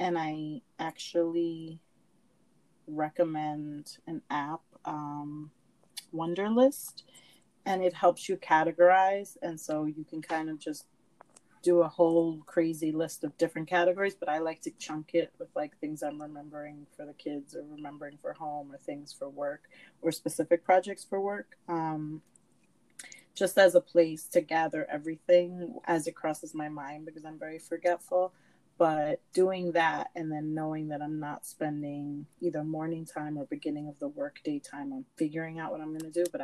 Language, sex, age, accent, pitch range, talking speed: English, female, 30-49, American, 150-185 Hz, 165 wpm